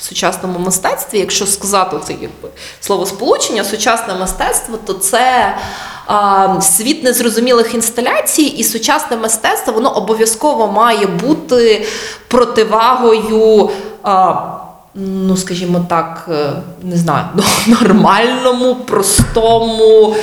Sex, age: female, 20-39